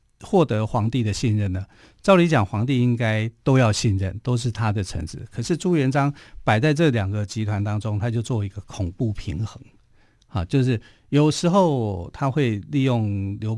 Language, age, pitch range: Chinese, 50-69, 105-140 Hz